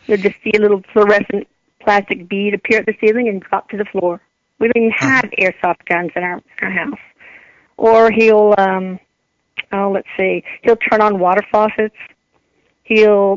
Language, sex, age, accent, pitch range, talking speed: English, female, 50-69, American, 200-235 Hz, 175 wpm